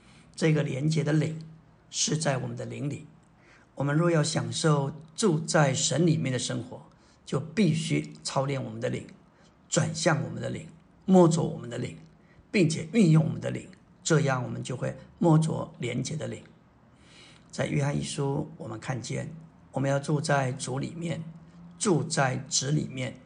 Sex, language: male, Chinese